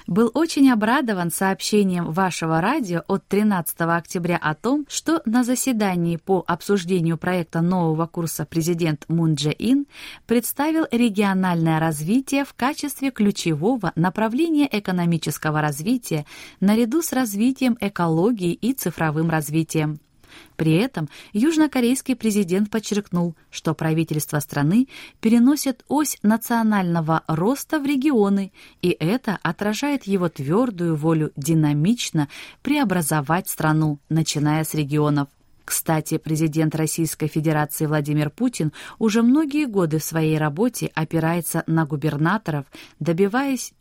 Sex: female